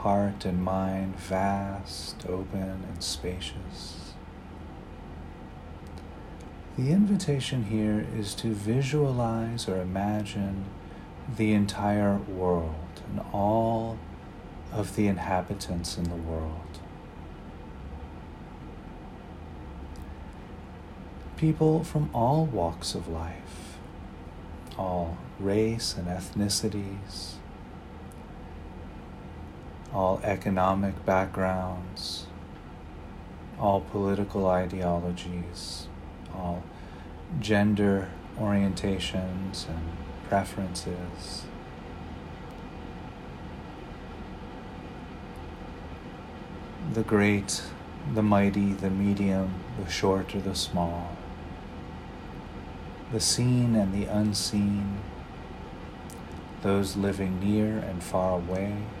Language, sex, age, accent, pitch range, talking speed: English, male, 40-59, American, 85-100 Hz, 70 wpm